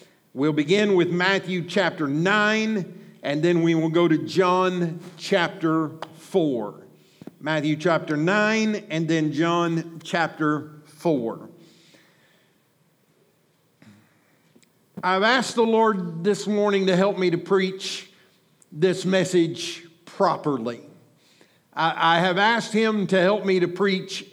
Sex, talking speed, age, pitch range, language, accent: male, 115 wpm, 50-69, 165-205 Hz, English, American